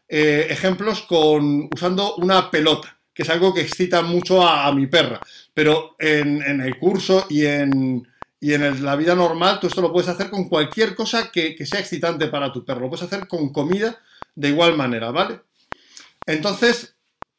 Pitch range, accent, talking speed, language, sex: 150-195 Hz, Spanish, 185 wpm, Spanish, male